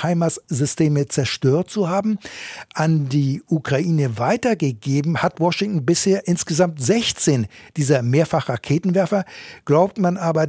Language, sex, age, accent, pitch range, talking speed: German, male, 60-79, German, 140-180 Hz, 105 wpm